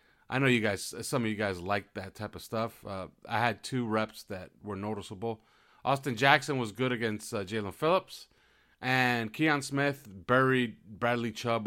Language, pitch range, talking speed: English, 100-130 Hz, 180 wpm